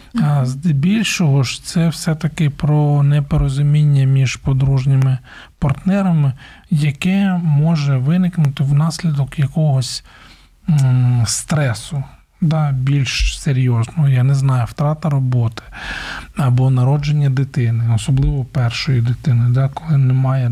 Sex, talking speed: male, 95 wpm